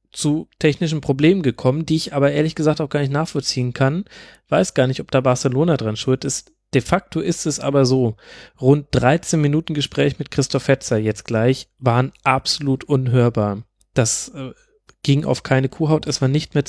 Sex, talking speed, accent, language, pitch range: male, 180 wpm, German, German, 130-150 Hz